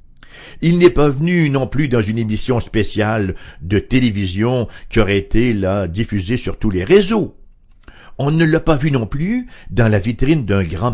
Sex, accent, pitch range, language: male, French, 95-130 Hz, English